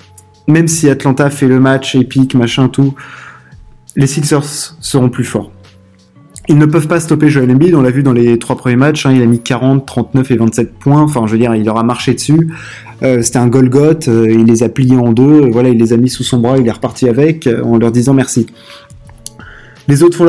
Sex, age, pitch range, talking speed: male, 20-39, 115-150 Hz, 235 wpm